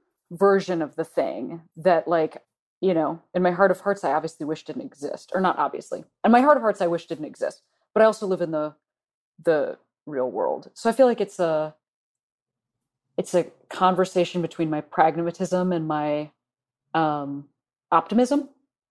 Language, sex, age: English, female, 30-49